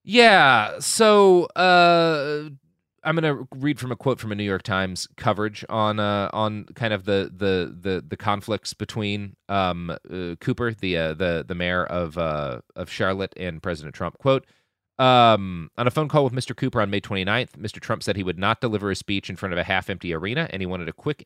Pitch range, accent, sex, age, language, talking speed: 90-115 Hz, American, male, 30-49, English, 205 wpm